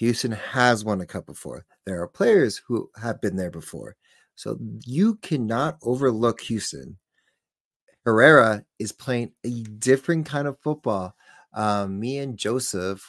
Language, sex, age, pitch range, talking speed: English, male, 30-49, 100-120 Hz, 140 wpm